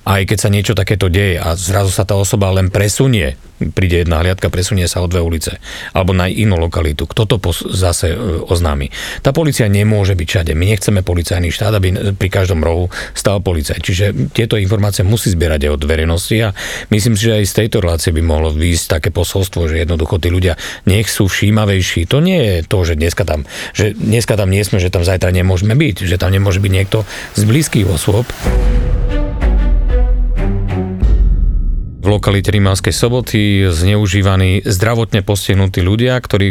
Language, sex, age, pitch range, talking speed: Slovak, male, 40-59, 90-110 Hz, 175 wpm